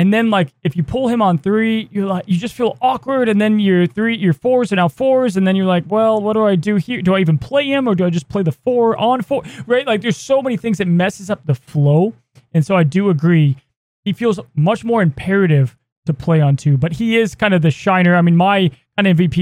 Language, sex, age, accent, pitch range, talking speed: English, male, 20-39, American, 150-205 Hz, 260 wpm